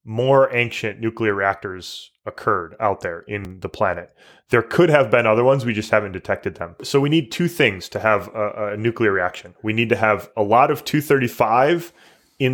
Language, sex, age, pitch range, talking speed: English, male, 20-39, 105-130 Hz, 195 wpm